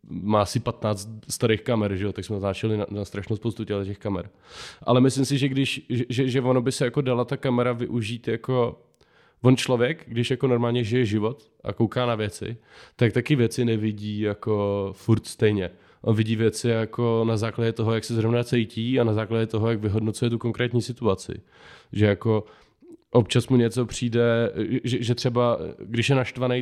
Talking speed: 185 wpm